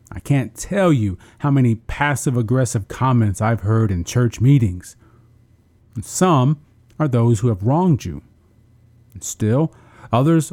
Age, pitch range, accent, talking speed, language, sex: 40-59, 110-140 Hz, American, 130 wpm, English, male